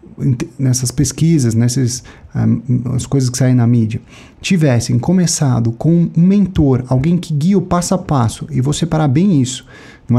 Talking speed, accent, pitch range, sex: 165 wpm, Brazilian, 125-160 Hz, male